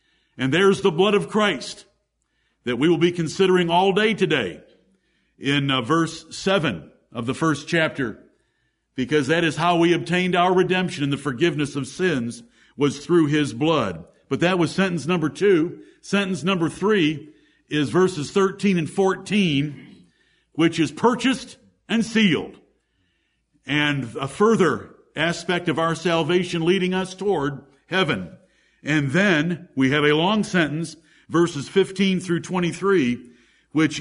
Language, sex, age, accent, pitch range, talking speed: English, male, 60-79, American, 155-205 Hz, 145 wpm